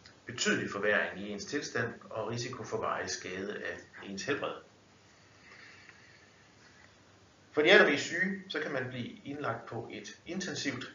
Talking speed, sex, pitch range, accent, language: 150 wpm, male, 100-130 Hz, native, Danish